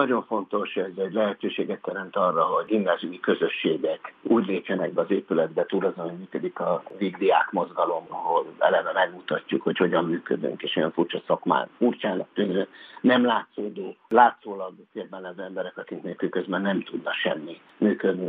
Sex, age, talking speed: male, 60-79, 145 wpm